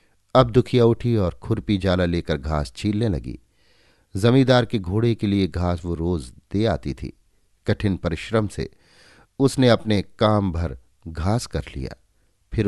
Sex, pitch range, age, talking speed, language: male, 85-110 Hz, 50-69, 150 wpm, Hindi